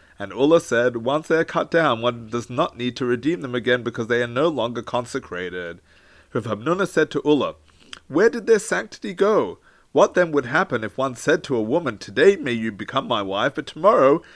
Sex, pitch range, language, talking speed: male, 110-170 Hz, English, 205 wpm